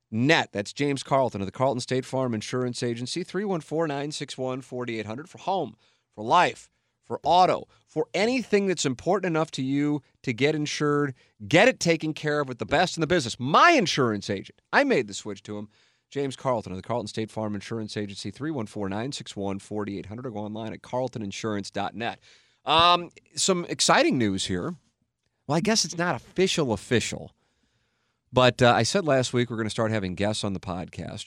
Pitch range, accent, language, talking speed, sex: 100-135 Hz, American, English, 170 wpm, male